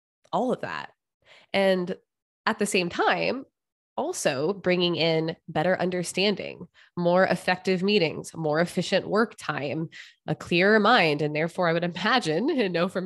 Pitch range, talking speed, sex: 155-195 Hz, 145 wpm, female